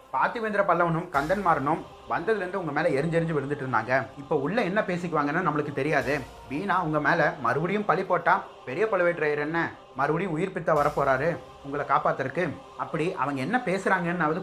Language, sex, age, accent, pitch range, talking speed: Tamil, male, 30-49, native, 140-185 Hz, 150 wpm